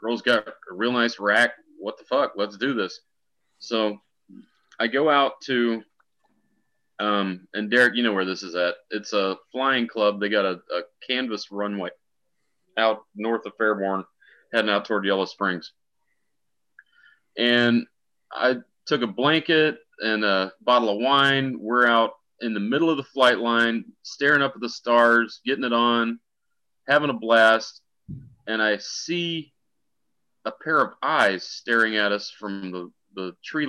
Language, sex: English, male